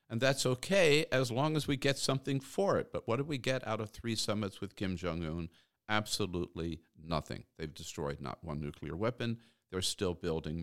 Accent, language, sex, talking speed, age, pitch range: American, English, male, 190 wpm, 50-69, 80-115 Hz